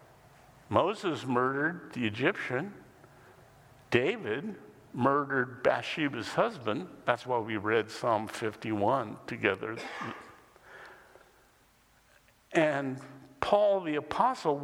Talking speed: 80 wpm